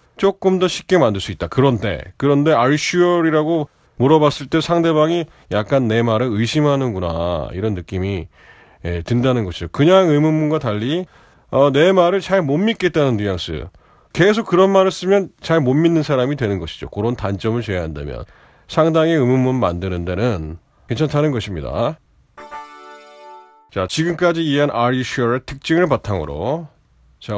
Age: 30-49